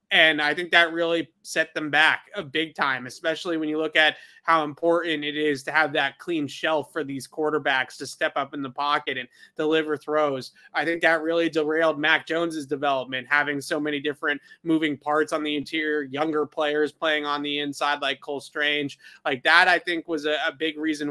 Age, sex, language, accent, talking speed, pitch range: 20-39, male, English, American, 200 wpm, 145-165 Hz